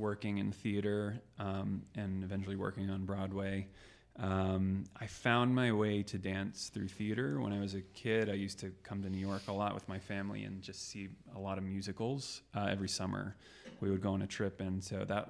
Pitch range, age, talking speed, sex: 95-105 Hz, 20-39, 210 wpm, male